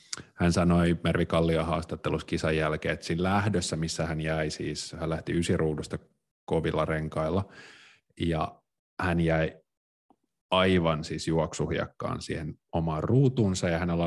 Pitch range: 80-95 Hz